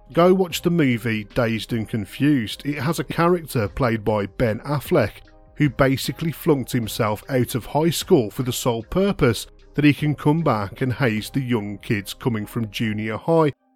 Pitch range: 110-155 Hz